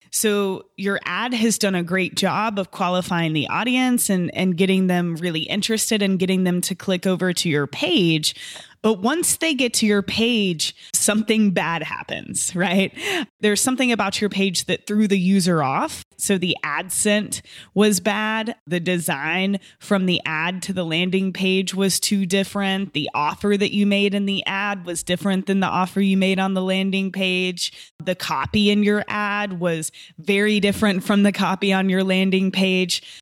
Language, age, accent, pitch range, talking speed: English, 20-39, American, 180-205 Hz, 180 wpm